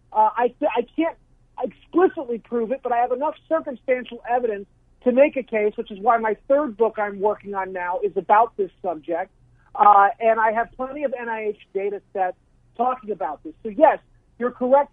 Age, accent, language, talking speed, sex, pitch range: 40-59, American, English, 190 wpm, male, 210-265 Hz